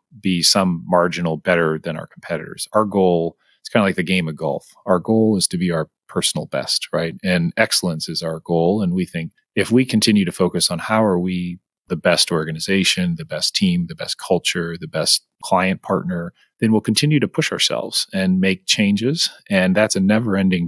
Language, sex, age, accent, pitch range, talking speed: English, male, 30-49, American, 90-130 Hz, 200 wpm